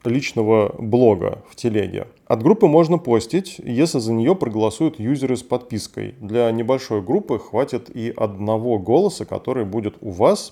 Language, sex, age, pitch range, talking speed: Russian, male, 20-39, 110-140 Hz, 150 wpm